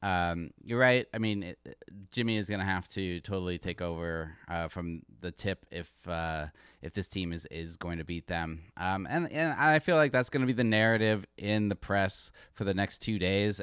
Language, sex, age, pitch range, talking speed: English, male, 30-49, 95-125 Hz, 210 wpm